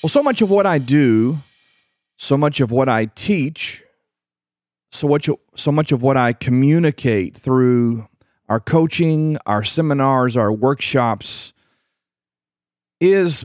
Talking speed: 125 wpm